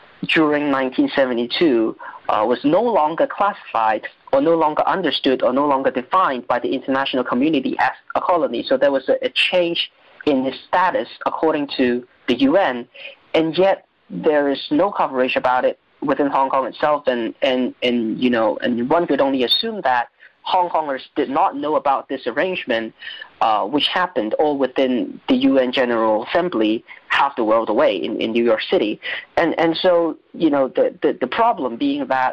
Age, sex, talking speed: 20-39, male, 180 wpm